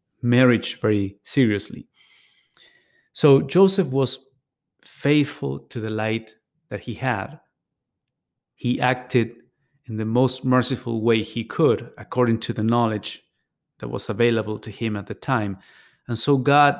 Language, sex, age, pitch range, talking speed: English, male, 30-49, 110-130 Hz, 130 wpm